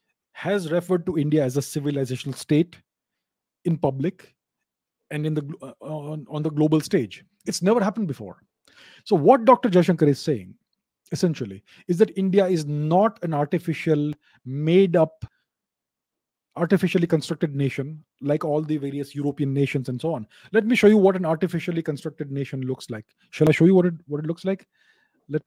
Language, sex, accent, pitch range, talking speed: English, male, Indian, 140-185 Hz, 170 wpm